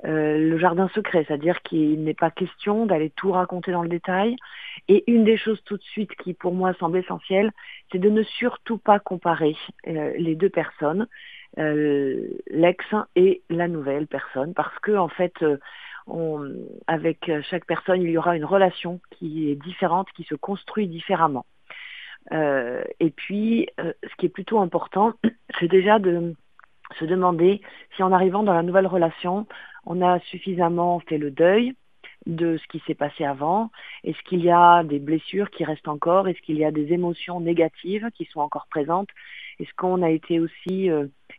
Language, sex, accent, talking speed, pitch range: French, female, French, 175 wpm, 160-195 Hz